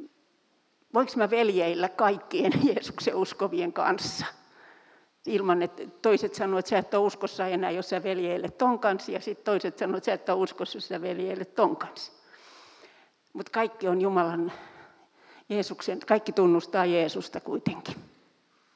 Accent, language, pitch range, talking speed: native, Finnish, 180-225 Hz, 135 wpm